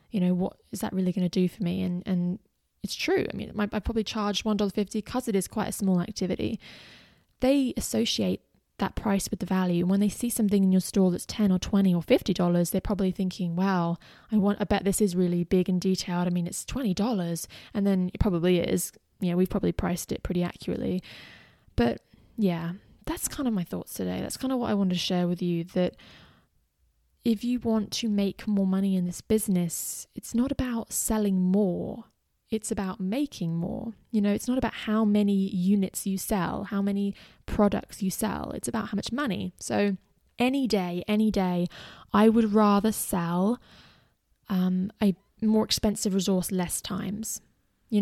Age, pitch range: 20-39, 185-220 Hz